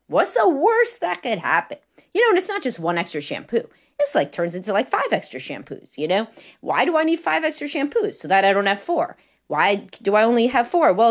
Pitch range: 170-245 Hz